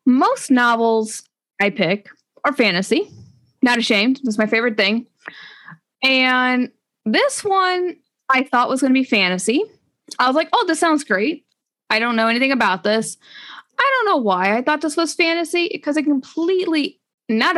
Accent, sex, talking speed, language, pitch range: American, female, 165 wpm, English, 215-290 Hz